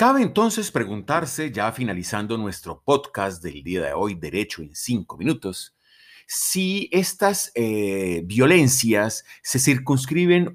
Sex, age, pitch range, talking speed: male, 40-59, 95-150 Hz, 120 wpm